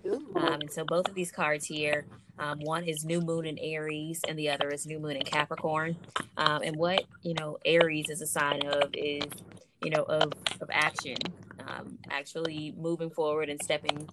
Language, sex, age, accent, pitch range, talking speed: English, female, 20-39, American, 150-165 Hz, 190 wpm